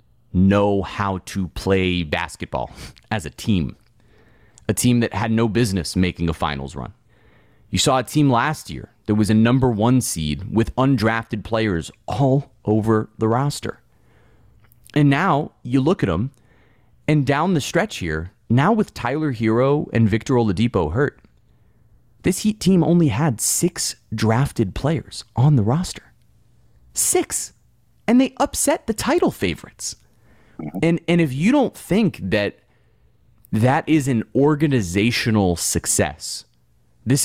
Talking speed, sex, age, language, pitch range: 140 wpm, male, 30-49, English, 95-135 Hz